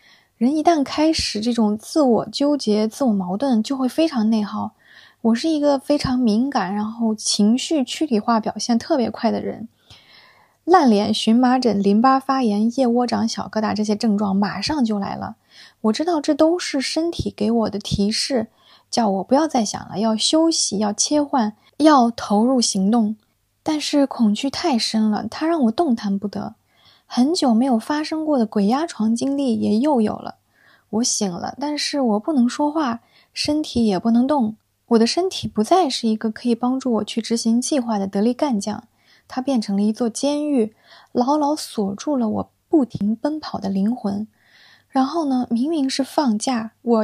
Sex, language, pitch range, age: female, Chinese, 215-280 Hz, 20-39